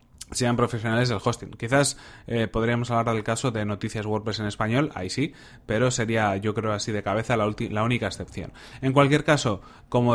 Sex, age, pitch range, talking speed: male, 20-39, 110-135 Hz, 190 wpm